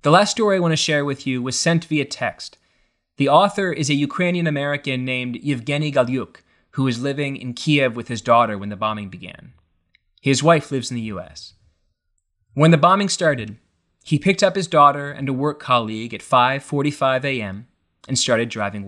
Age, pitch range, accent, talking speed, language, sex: 20-39, 120-155 Hz, American, 185 wpm, English, male